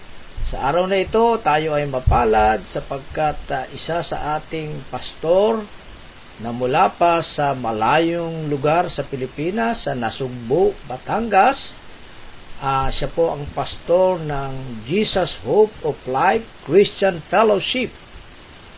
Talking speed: 115 wpm